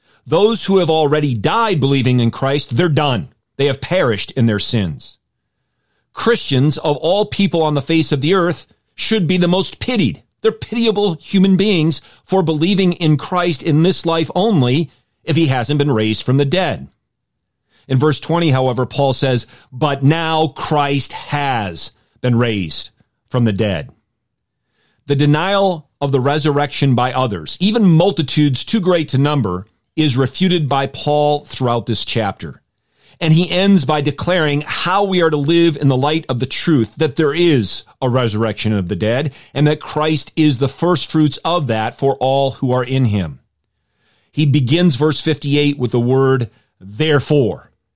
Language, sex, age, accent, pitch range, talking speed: English, male, 40-59, American, 130-165 Hz, 165 wpm